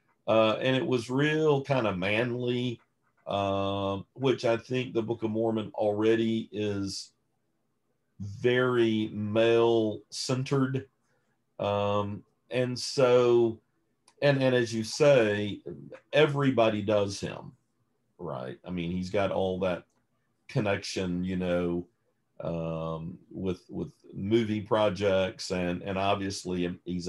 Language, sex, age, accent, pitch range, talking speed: English, male, 50-69, American, 90-115 Hz, 110 wpm